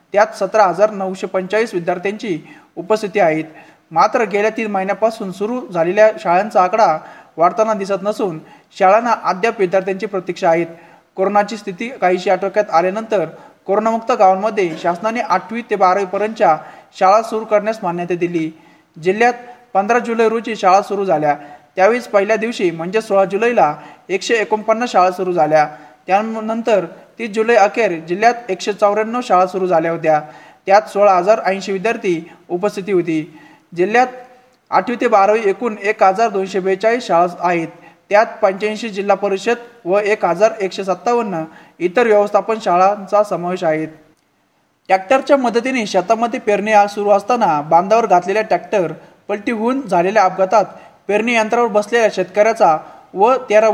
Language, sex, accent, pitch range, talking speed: Marathi, male, native, 180-220 Hz, 125 wpm